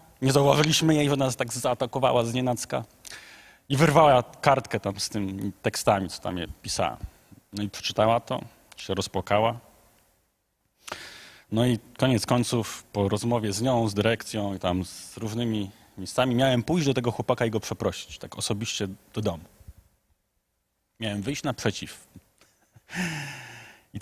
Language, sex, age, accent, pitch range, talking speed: Polish, male, 30-49, native, 105-130 Hz, 140 wpm